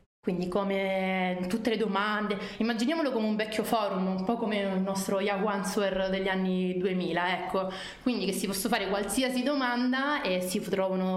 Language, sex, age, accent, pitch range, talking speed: Italian, female, 20-39, native, 190-225 Hz, 165 wpm